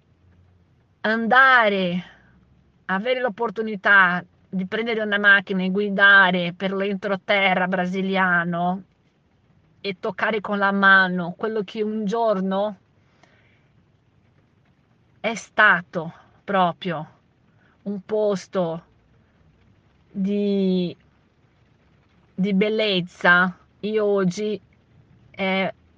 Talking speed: 75 wpm